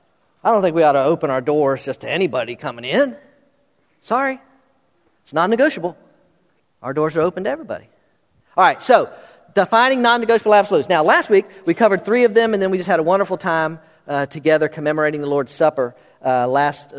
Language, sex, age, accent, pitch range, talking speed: English, male, 40-59, American, 170-230 Hz, 185 wpm